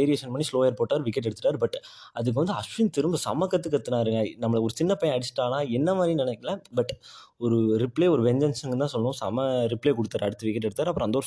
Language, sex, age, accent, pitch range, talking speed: Tamil, male, 20-39, native, 120-155 Hz, 110 wpm